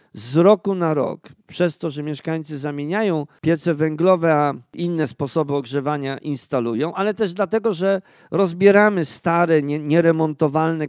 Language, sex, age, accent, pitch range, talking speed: Polish, male, 50-69, native, 155-200 Hz, 125 wpm